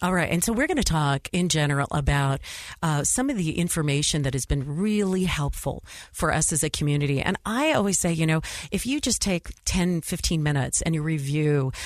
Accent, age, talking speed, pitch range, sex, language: American, 40-59, 215 wpm, 150-185 Hz, female, English